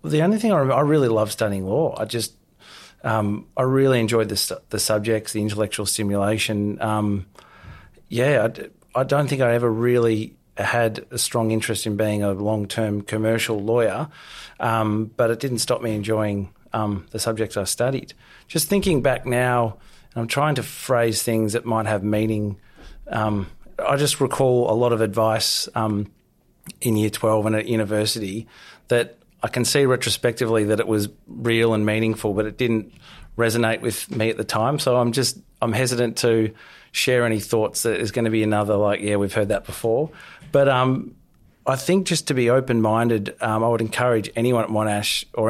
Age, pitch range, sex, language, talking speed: 30-49, 105-120 Hz, male, English, 185 wpm